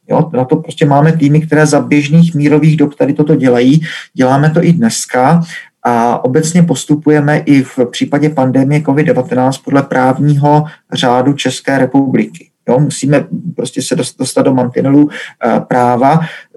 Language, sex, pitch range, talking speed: Czech, male, 130-155 Hz, 140 wpm